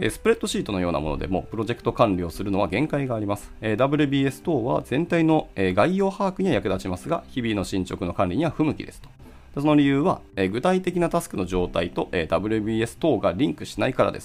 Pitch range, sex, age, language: 90-140 Hz, male, 30-49, Japanese